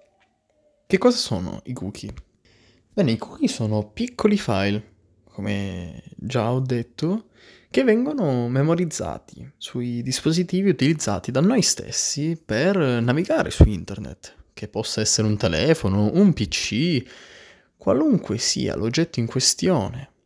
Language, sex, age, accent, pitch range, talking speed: Italian, male, 20-39, native, 105-170 Hz, 120 wpm